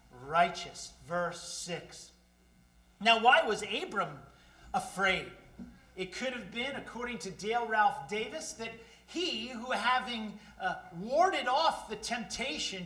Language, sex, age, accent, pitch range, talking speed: English, male, 40-59, American, 190-245 Hz, 120 wpm